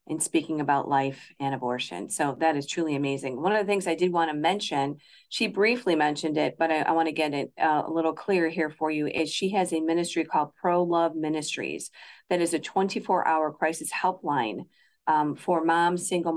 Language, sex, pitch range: English, female, 150-180 Hz